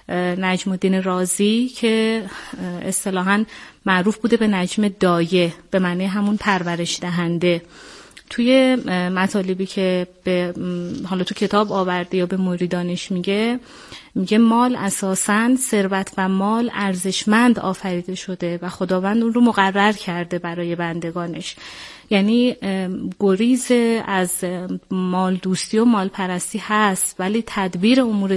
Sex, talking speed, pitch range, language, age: female, 120 wpm, 185-225 Hz, Persian, 30-49